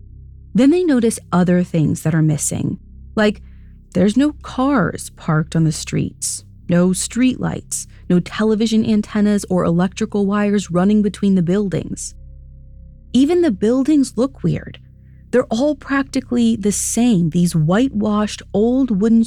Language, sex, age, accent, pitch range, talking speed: English, female, 30-49, American, 170-230 Hz, 135 wpm